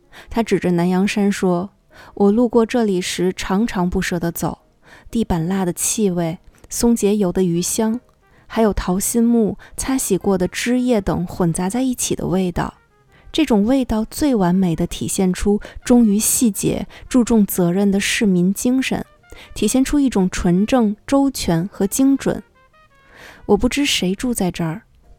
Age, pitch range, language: 20-39, 180-230 Hz, Chinese